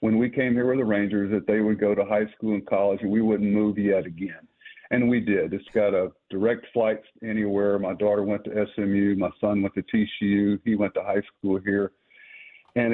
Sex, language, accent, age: male, English, American, 50-69